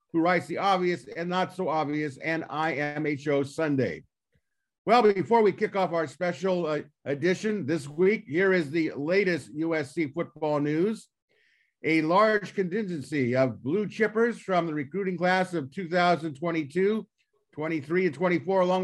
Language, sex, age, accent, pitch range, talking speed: English, male, 50-69, American, 160-190 Hz, 135 wpm